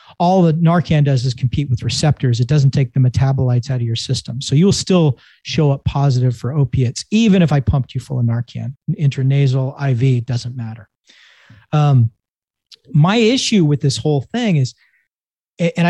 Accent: American